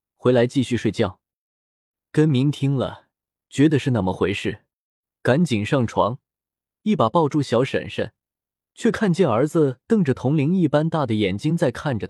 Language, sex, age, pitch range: Chinese, male, 20-39, 105-150 Hz